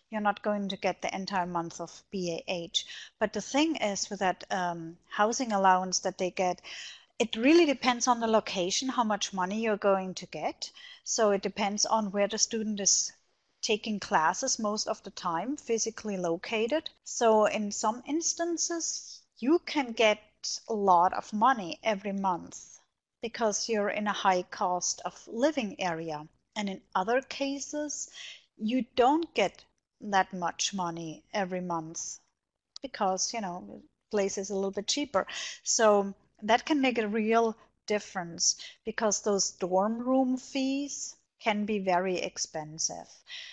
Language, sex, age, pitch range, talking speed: English, female, 30-49, 190-245 Hz, 150 wpm